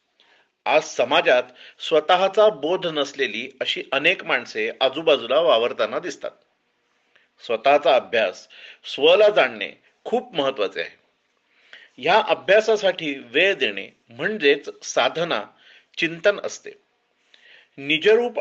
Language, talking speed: Marathi, 70 wpm